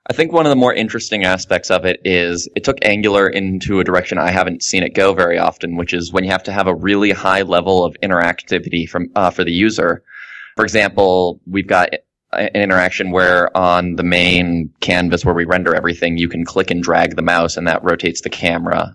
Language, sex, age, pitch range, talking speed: English, male, 20-39, 85-95 Hz, 220 wpm